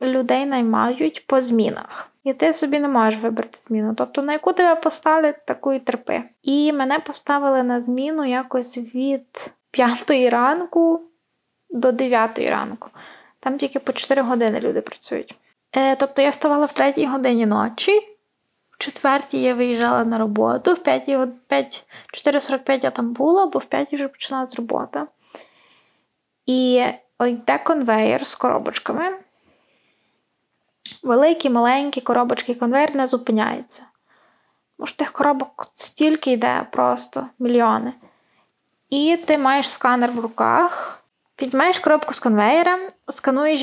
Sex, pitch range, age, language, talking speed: female, 250-295 Hz, 20-39, Ukrainian, 130 wpm